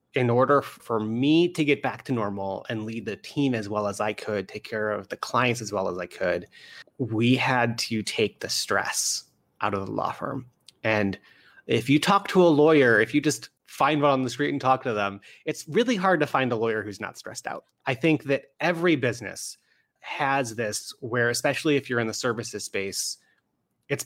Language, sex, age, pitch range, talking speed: English, male, 30-49, 110-145 Hz, 210 wpm